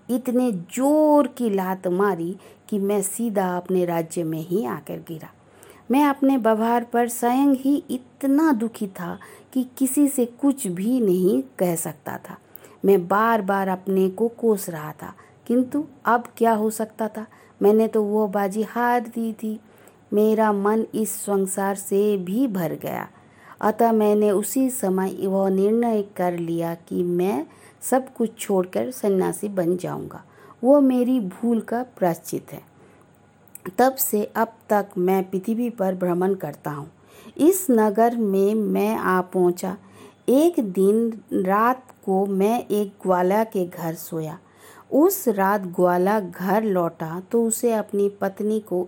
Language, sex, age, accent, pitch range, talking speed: Hindi, female, 50-69, native, 185-235 Hz, 145 wpm